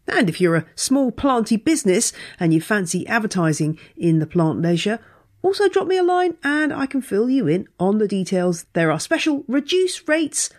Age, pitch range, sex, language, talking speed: 40-59, 175-275 Hz, female, English, 195 wpm